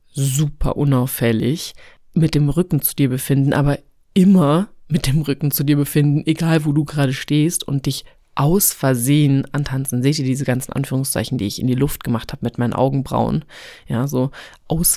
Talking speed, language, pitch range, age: 175 wpm, German, 135-175 Hz, 30-49